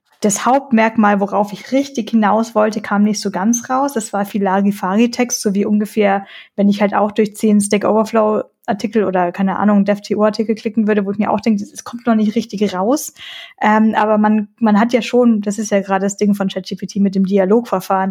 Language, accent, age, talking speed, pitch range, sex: German, German, 20-39, 210 wpm, 195-225 Hz, female